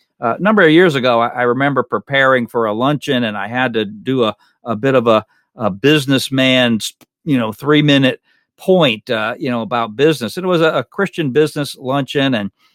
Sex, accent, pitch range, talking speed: male, American, 120-145 Hz, 205 wpm